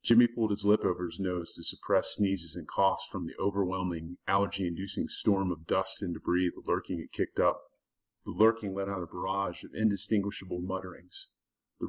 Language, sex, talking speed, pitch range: English, male, 180 wpm, 90-105 Hz